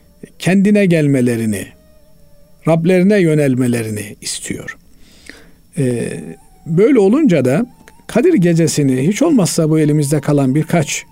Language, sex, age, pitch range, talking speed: Turkish, male, 50-69, 130-180 Hz, 90 wpm